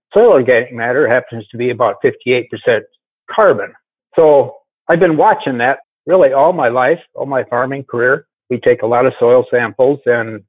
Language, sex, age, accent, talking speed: English, male, 60-79, American, 170 wpm